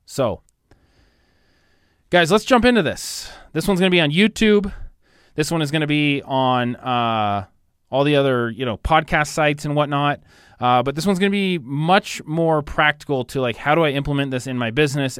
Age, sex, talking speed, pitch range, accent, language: 20-39, male, 195 wpm, 105-145 Hz, American, English